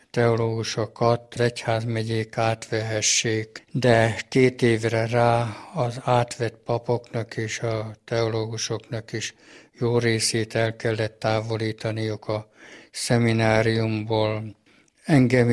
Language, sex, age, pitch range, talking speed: Hungarian, male, 60-79, 110-120 Hz, 85 wpm